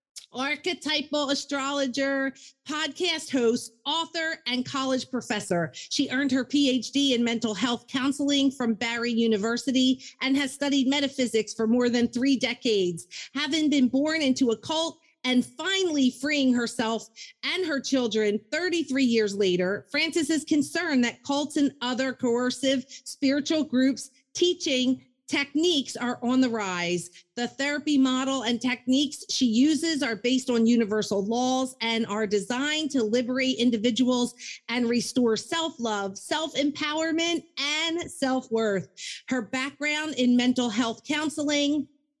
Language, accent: English, American